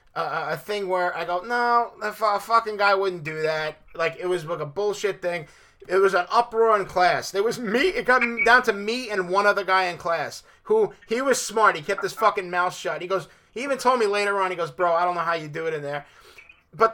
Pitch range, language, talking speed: 175-230 Hz, English, 250 wpm